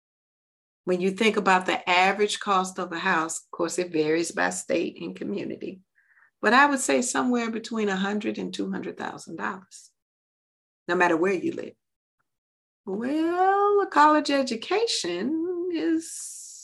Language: English